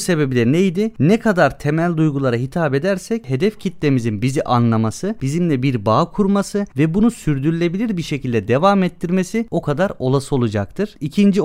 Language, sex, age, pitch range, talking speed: Turkish, male, 30-49, 135-190 Hz, 150 wpm